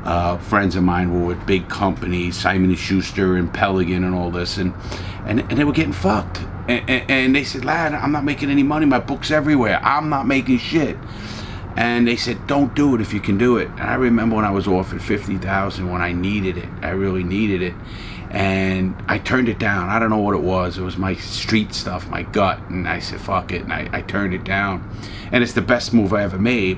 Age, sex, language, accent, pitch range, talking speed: 40-59, male, English, American, 95-110 Hz, 235 wpm